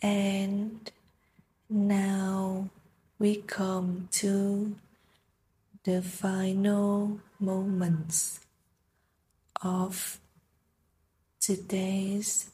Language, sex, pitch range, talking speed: Vietnamese, female, 180-210 Hz, 50 wpm